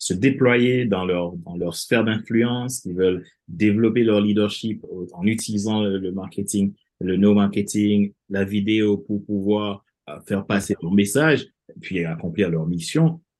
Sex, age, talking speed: male, 30-49, 150 wpm